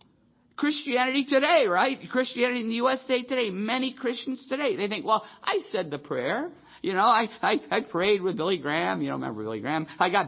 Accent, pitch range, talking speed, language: American, 160-225 Hz, 205 wpm, English